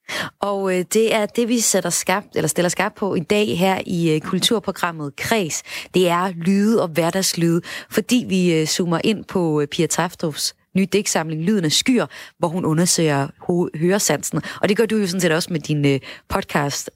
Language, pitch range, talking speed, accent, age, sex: Danish, 160-195 Hz, 175 wpm, native, 30-49, female